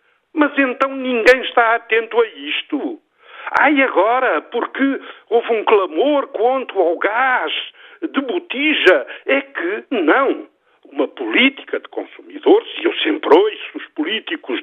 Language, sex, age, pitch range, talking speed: Portuguese, male, 50-69, 265-405 Hz, 125 wpm